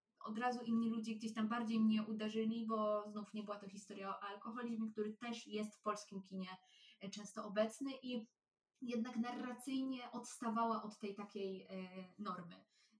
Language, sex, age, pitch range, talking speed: Polish, female, 20-39, 190-225 Hz, 150 wpm